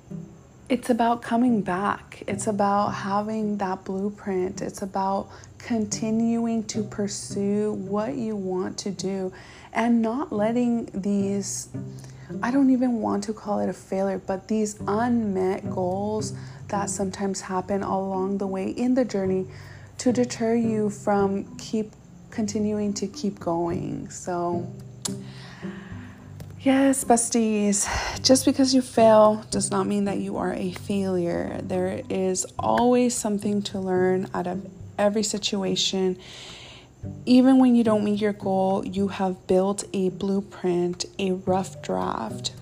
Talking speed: 135 wpm